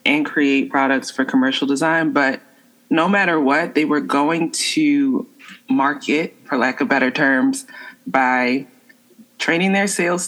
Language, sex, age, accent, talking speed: English, female, 20-39, American, 140 wpm